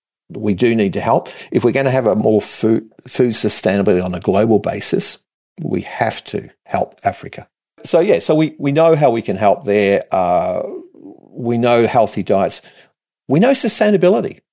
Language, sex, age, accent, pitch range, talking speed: English, male, 50-69, Australian, 105-135 Hz, 180 wpm